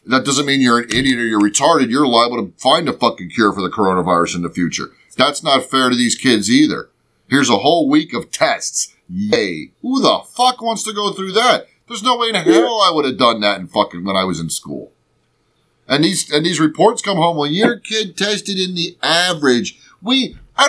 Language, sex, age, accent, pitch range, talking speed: English, male, 30-49, American, 125-205 Hz, 225 wpm